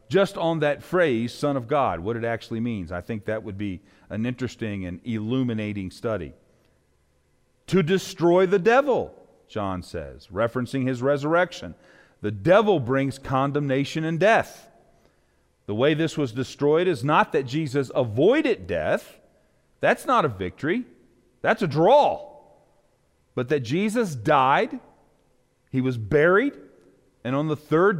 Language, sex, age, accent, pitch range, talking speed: English, male, 40-59, American, 115-170 Hz, 140 wpm